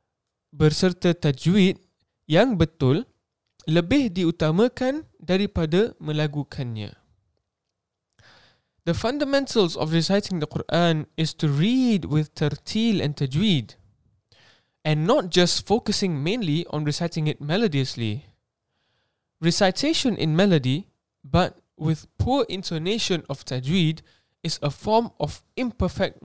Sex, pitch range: male, 140-195 Hz